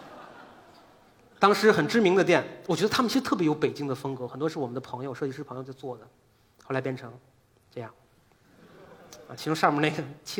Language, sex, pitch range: Chinese, male, 130-190 Hz